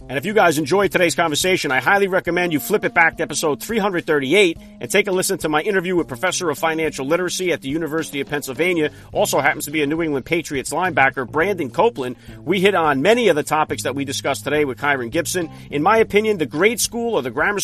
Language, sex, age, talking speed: English, male, 40-59, 230 wpm